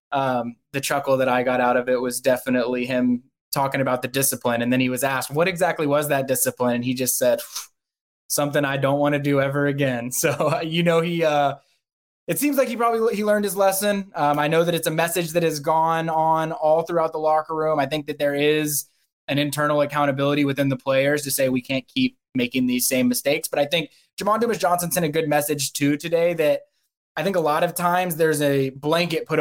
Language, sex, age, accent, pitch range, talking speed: English, male, 20-39, American, 135-165 Hz, 230 wpm